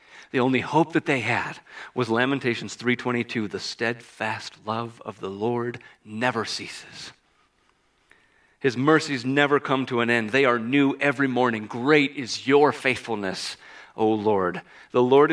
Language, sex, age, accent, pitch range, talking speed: English, male, 40-59, American, 115-145 Hz, 145 wpm